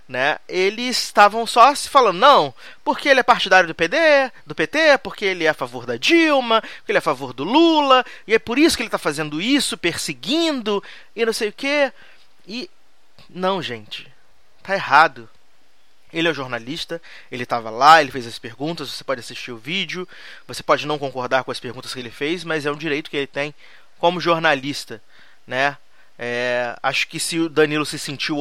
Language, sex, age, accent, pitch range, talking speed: Portuguese, male, 20-39, Brazilian, 145-200 Hz, 195 wpm